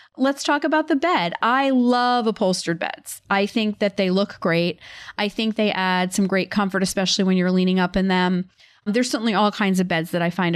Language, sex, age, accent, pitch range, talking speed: English, female, 30-49, American, 195-235 Hz, 215 wpm